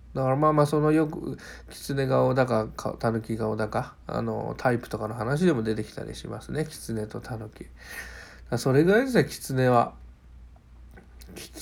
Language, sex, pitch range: Japanese, male, 110-145 Hz